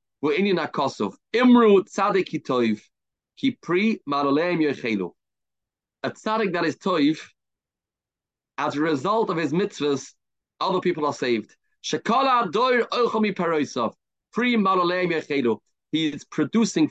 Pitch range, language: 140-185 Hz, English